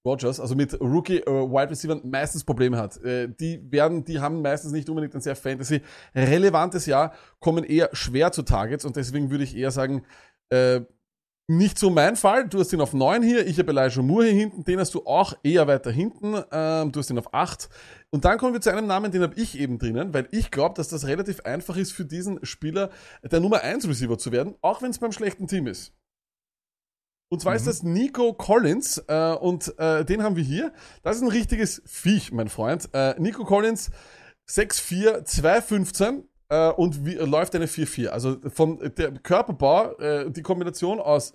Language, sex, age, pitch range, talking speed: German, male, 30-49, 140-195 Hz, 205 wpm